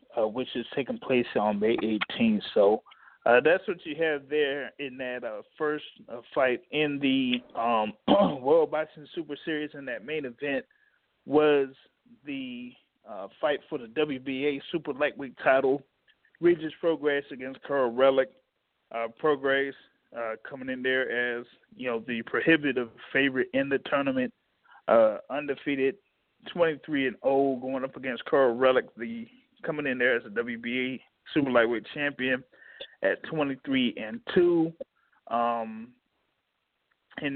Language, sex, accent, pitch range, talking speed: English, male, American, 130-215 Hz, 145 wpm